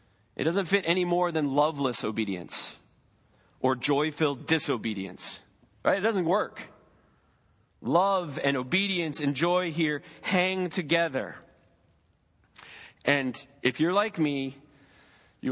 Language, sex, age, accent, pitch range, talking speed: English, male, 30-49, American, 115-160 Hz, 110 wpm